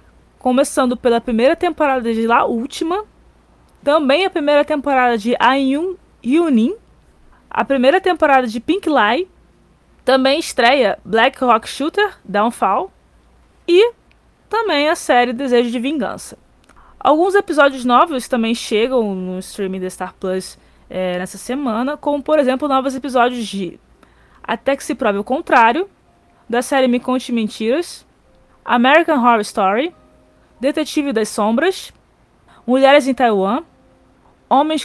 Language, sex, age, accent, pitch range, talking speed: Portuguese, female, 20-39, Brazilian, 230-300 Hz, 125 wpm